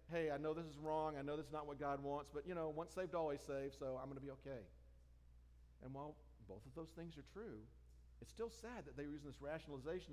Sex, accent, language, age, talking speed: male, American, English, 50-69, 260 wpm